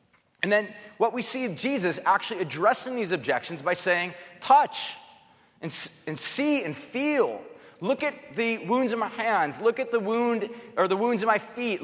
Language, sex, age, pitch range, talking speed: English, male, 30-49, 180-255 Hz, 175 wpm